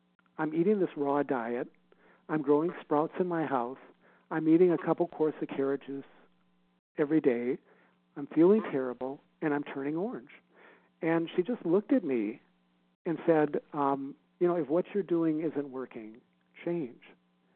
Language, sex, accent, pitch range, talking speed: English, male, American, 135-165 Hz, 155 wpm